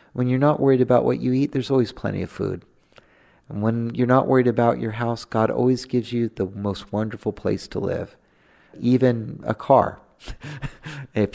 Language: English